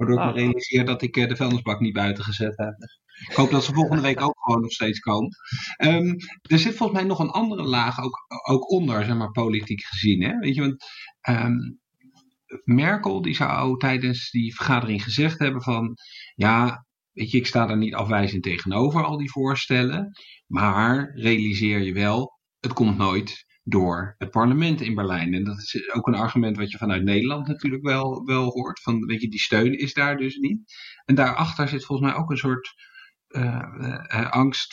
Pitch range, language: 115-135 Hz, English